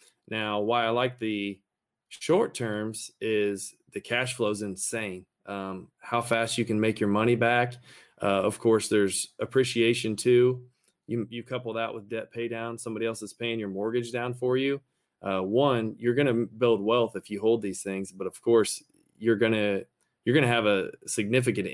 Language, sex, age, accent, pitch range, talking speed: English, male, 20-39, American, 105-120 Hz, 180 wpm